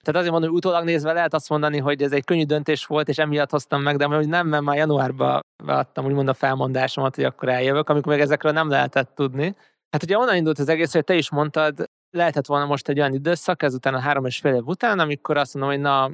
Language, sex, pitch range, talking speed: Hungarian, male, 130-155 Hz, 245 wpm